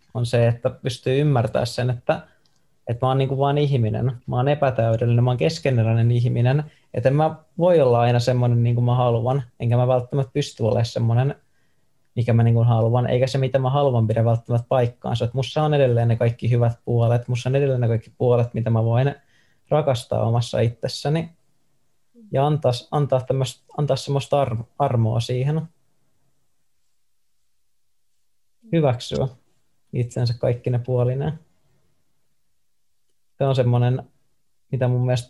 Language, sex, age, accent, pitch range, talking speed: Finnish, male, 20-39, native, 120-140 Hz, 150 wpm